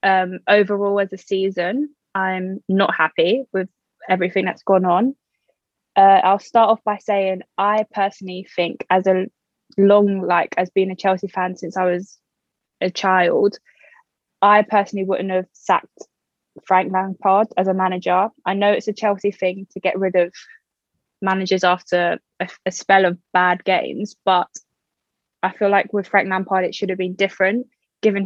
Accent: British